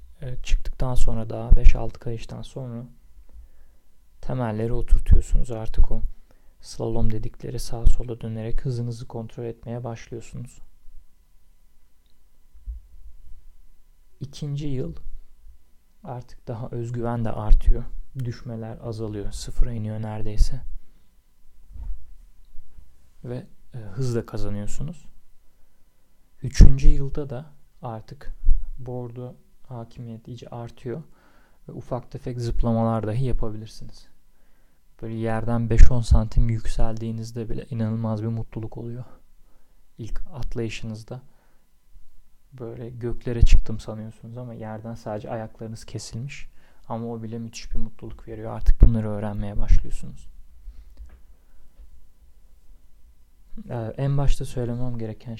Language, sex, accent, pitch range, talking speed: Turkish, male, native, 80-120 Hz, 95 wpm